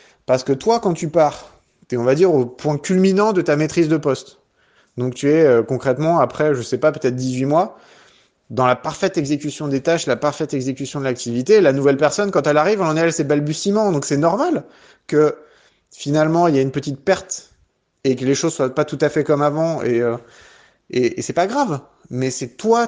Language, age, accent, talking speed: French, 30-49, French, 225 wpm